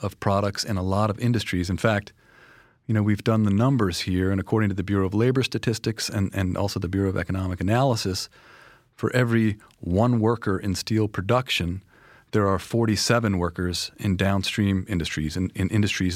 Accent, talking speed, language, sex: American, 180 wpm, English, male